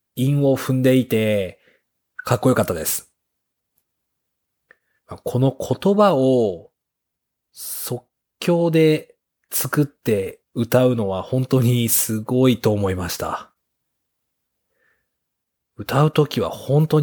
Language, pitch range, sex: Japanese, 115-145 Hz, male